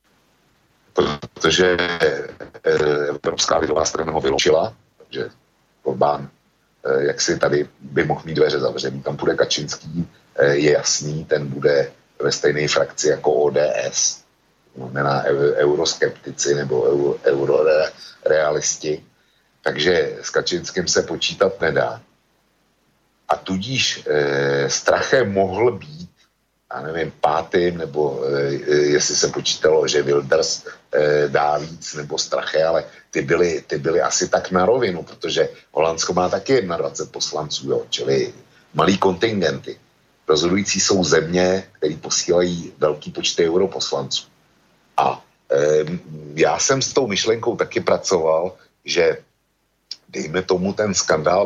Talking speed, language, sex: 115 wpm, Slovak, male